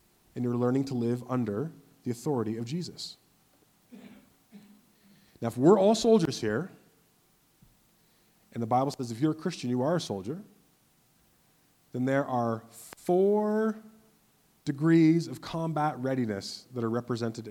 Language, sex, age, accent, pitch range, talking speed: English, male, 30-49, American, 115-170 Hz, 135 wpm